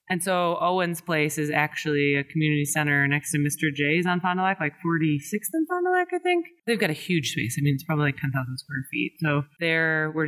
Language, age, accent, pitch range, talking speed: English, 20-39, American, 145-180 Hz, 240 wpm